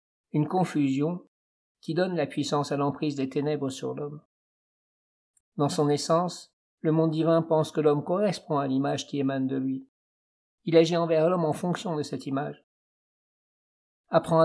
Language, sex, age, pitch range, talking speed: French, male, 50-69, 140-160 Hz, 160 wpm